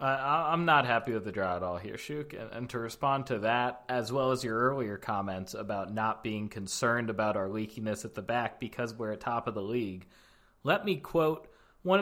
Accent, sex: American, male